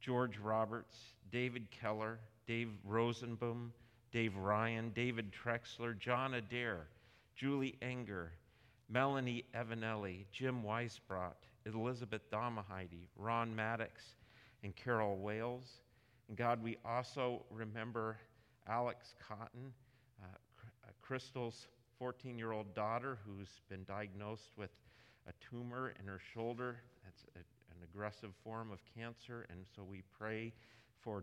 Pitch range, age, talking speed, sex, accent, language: 110-125 Hz, 40-59, 110 wpm, male, American, English